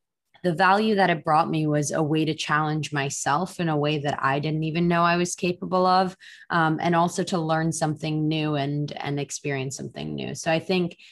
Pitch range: 150-180 Hz